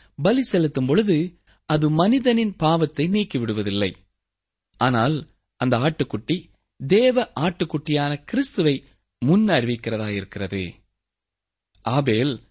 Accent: native